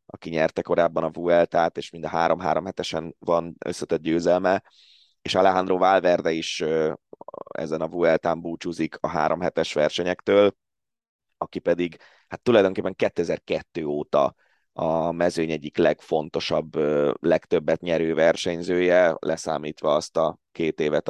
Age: 30-49